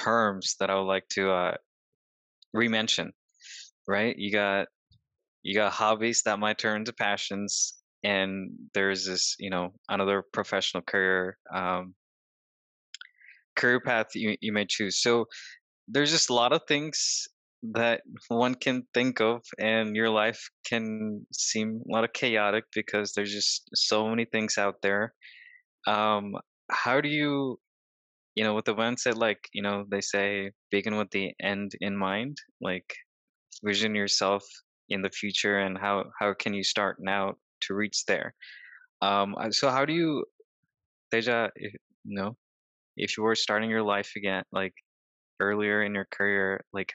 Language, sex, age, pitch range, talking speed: Telugu, male, 20-39, 100-115 Hz, 155 wpm